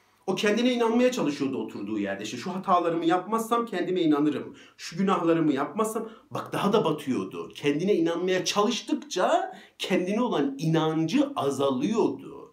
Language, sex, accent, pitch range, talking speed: Turkish, male, native, 130-185 Hz, 125 wpm